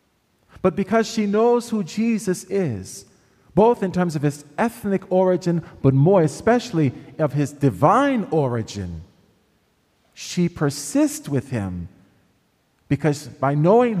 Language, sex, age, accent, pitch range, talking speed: English, male, 40-59, American, 115-175 Hz, 120 wpm